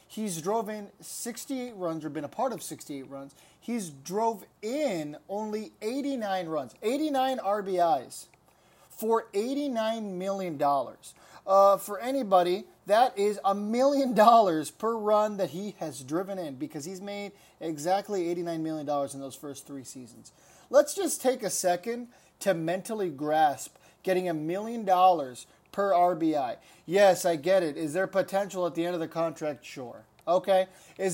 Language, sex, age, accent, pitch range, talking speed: English, male, 30-49, American, 175-220 Hz, 150 wpm